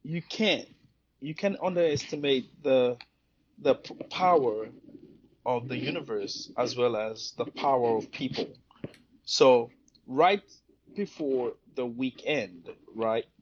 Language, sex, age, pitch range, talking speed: English, male, 30-49, 115-150 Hz, 105 wpm